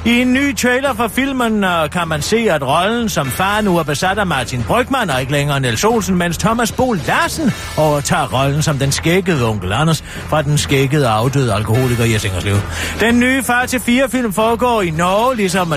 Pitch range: 150-215 Hz